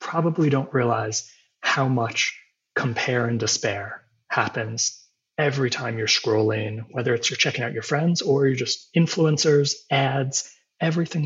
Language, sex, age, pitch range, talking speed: English, male, 20-39, 110-135 Hz, 140 wpm